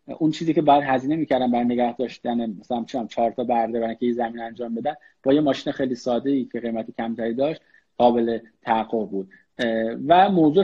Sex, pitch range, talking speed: male, 120-160 Hz, 185 wpm